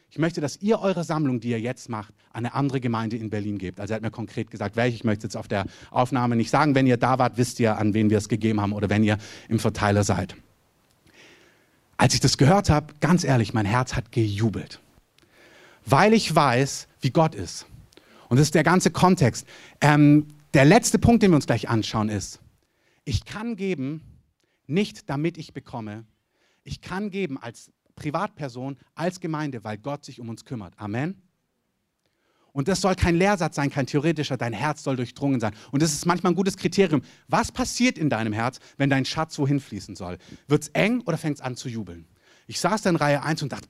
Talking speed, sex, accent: 205 wpm, male, German